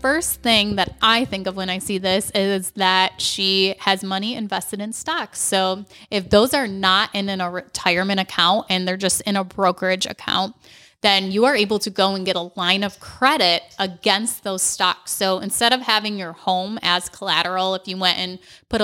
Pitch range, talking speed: 185-210 Hz, 200 wpm